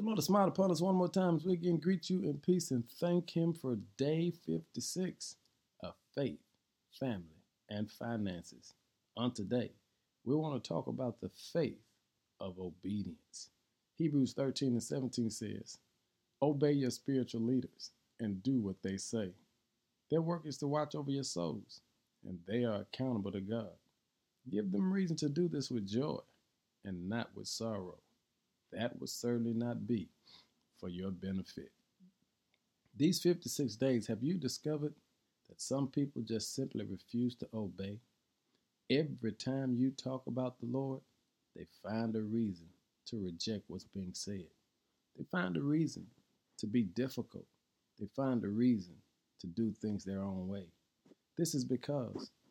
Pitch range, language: 105-145 Hz, English